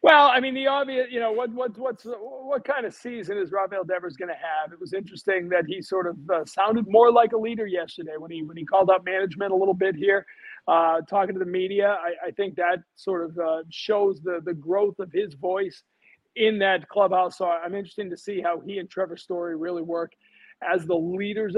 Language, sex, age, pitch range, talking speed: English, male, 40-59, 175-215 Hz, 220 wpm